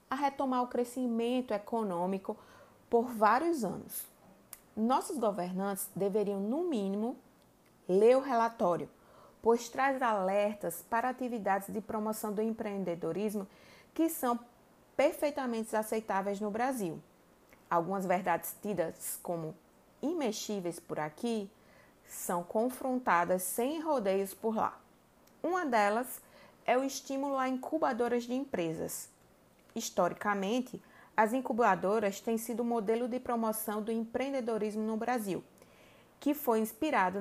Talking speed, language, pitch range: 110 wpm, Portuguese, 200-255 Hz